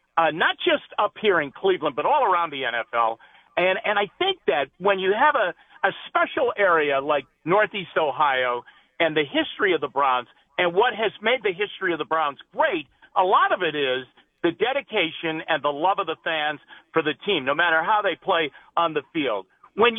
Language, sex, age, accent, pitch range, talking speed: English, male, 50-69, American, 160-240 Hz, 205 wpm